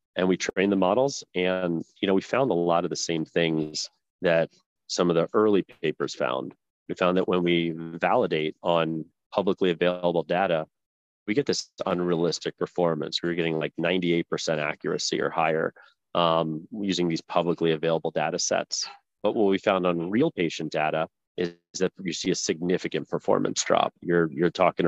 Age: 30-49